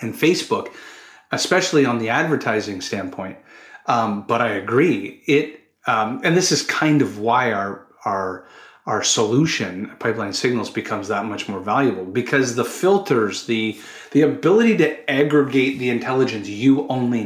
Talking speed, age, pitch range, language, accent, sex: 145 wpm, 30-49, 115-150 Hz, English, American, male